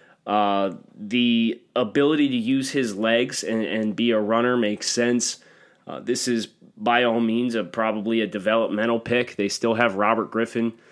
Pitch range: 110-125 Hz